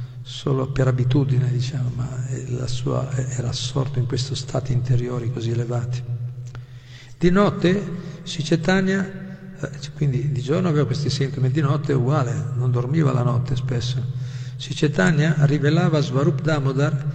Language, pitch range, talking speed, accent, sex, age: Italian, 125-140 Hz, 130 wpm, native, male, 50-69